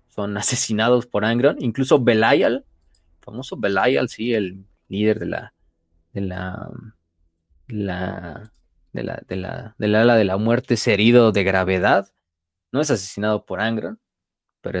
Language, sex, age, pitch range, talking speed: Spanish, male, 20-39, 95-115 Hz, 155 wpm